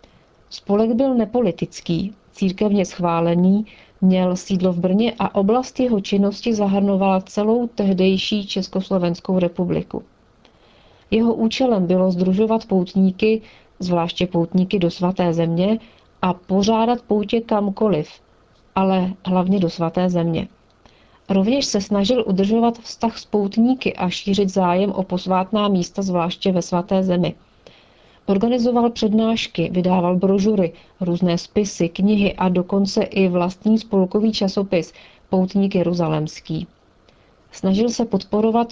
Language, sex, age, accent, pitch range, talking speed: Czech, female, 40-59, native, 180-210 Hz, 110 wpm